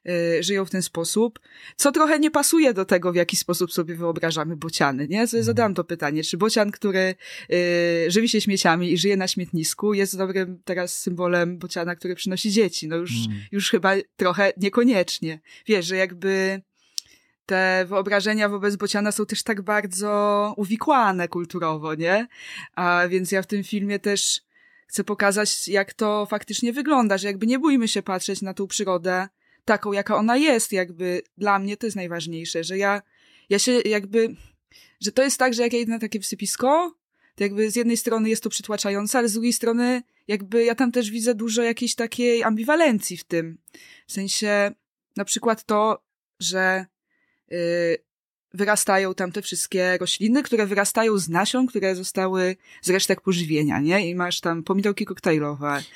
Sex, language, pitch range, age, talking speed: female, Polish, 180-225 Hz, 20-39, 165 wpm